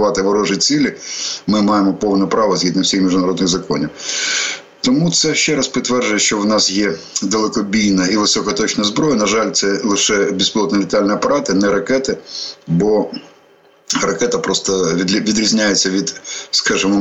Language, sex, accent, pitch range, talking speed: Ukrainian, male, native, 95-110 Hz, 135 wpm